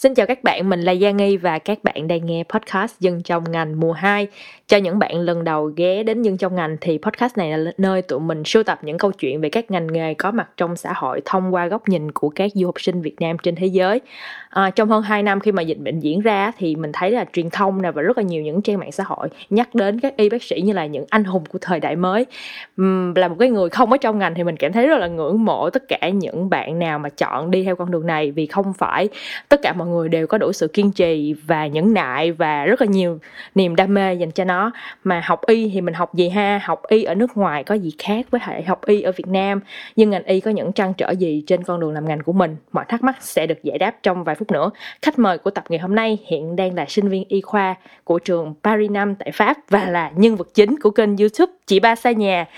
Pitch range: 170-215 Hz